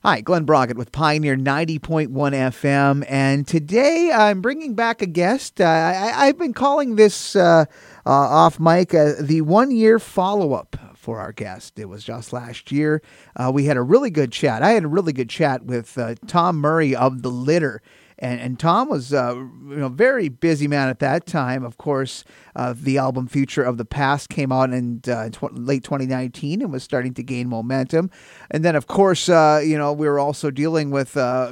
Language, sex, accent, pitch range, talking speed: English, male, American, 130-170 Hz, 195 wpm